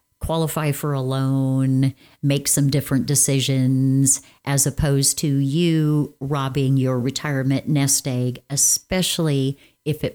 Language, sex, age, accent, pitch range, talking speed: English, female, 50-69, American, 135-180 Hz, 120 wpm